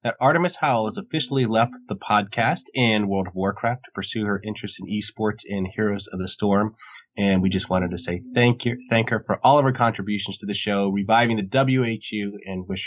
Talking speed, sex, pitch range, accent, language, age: 215 wpm, male, 100-125 Hz, American, English, 20-39